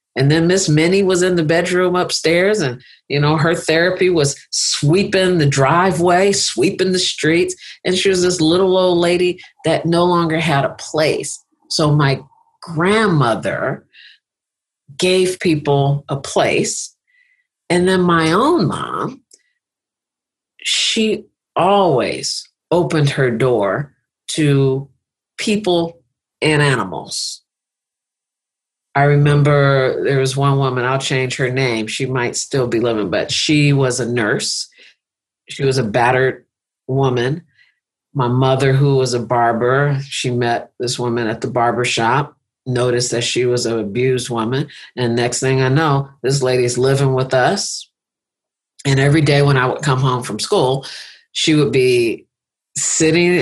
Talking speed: 140 wpm